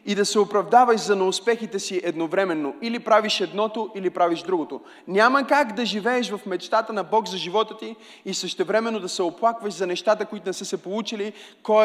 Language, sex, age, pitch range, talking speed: Bulgarian, male, 30-49, 190-230 Hz, 190 wpm